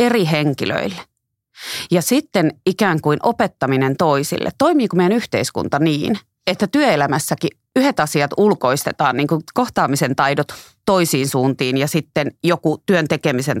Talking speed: 125 wpm